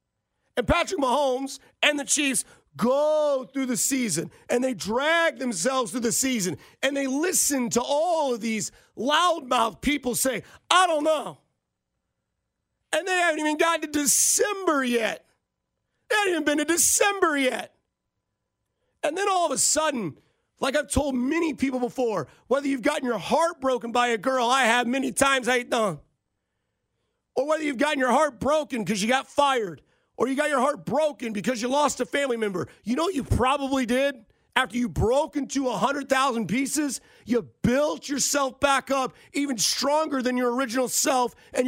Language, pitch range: English, 245-295 Hz